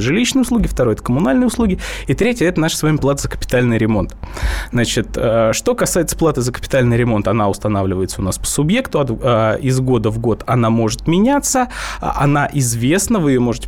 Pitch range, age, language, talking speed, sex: 110-165 Hz, 20-39, Russian, 180 wpm, male